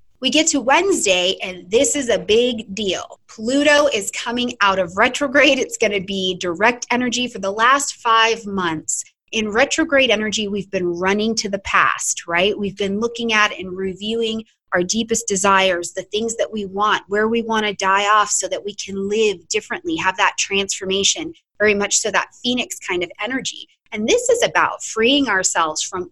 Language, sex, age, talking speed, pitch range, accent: English, female, 20-39, 185 wpm, 195-245 Hz, American